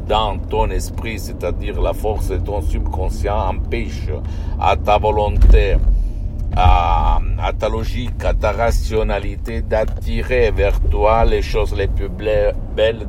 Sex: male